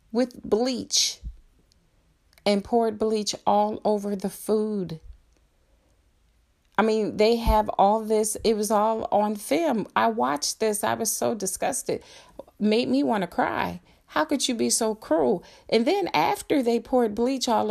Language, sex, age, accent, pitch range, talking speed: English, female, 40-59, American, 185-235 Hz, 150 wpm